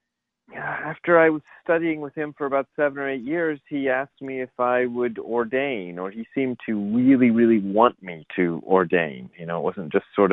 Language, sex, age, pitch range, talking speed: English, male, 30-49, 90-130 Hz, 205 wpm